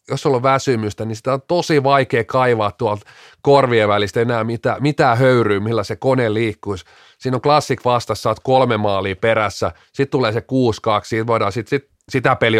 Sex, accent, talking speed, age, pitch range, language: male, native, 180 wpm, 30-49, 105-130 Hz, Finnish